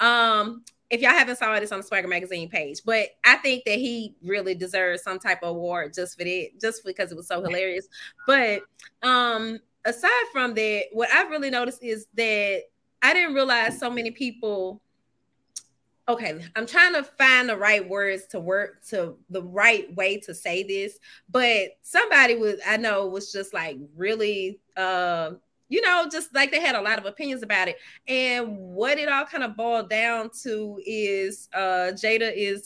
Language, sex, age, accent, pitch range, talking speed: English, female, 20-39, American, 195-245 Hz, 185 wpm